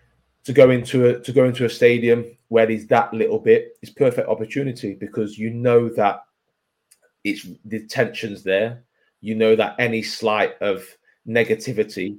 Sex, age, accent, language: male, 30-49, British, English